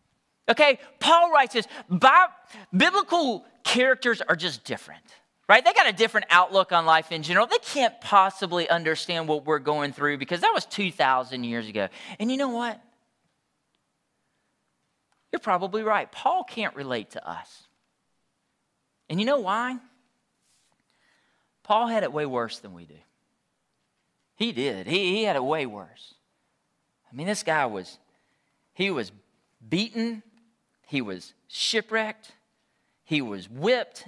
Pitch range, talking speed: 170-245 Hz, 140 wpm